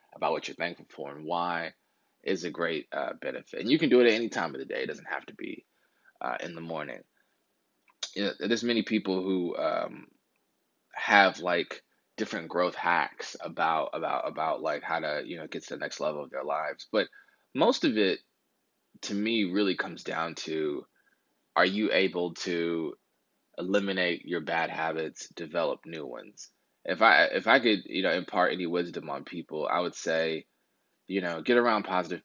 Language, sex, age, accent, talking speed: English, male, 20-39, American, 185 wpm